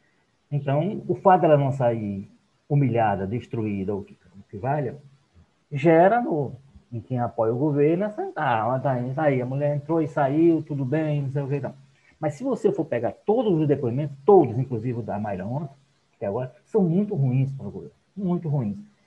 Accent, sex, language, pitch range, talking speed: Brazilian, male, Portuguese, 130-175 Hz, 195 wpm